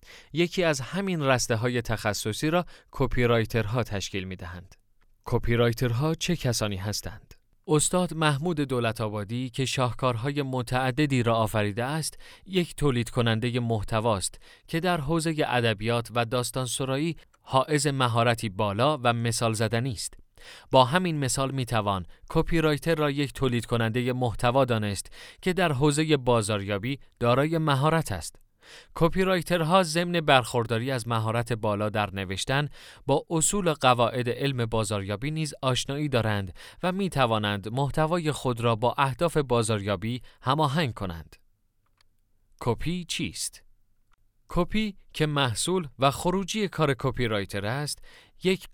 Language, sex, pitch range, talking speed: Persian, male, 110-150 Hz, 130 wpm